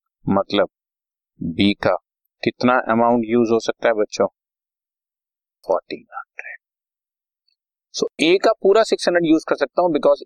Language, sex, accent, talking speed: Hindi, male, native, 125 wpm